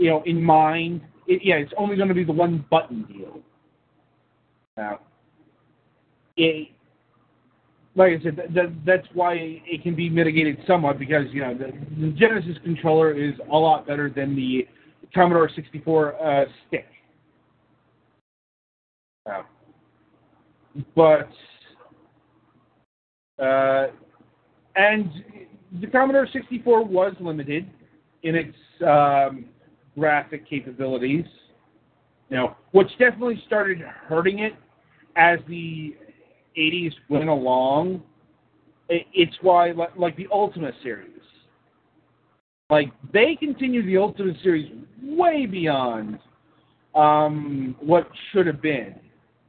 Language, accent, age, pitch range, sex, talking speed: English, American, 40-59, 150-185 Hz, male, 110 wpm